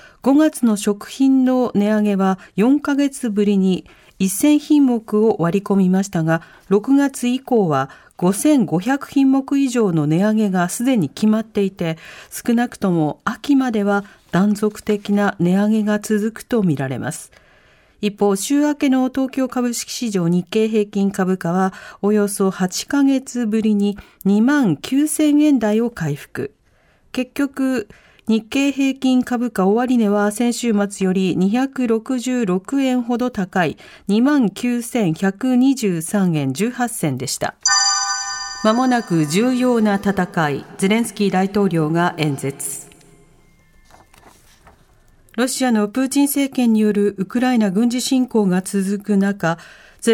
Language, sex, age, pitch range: Japanese, female, 40-59, 190-255 Hz